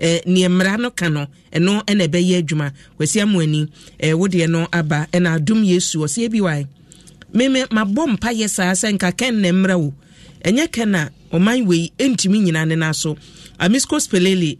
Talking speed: 170 wpm